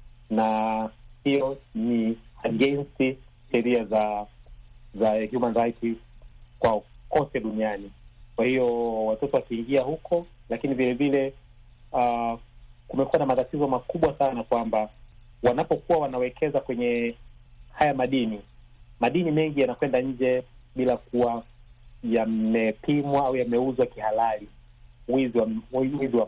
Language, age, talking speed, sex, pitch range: Swahili, 30-49, 100 wpm, male, 120-135 Hz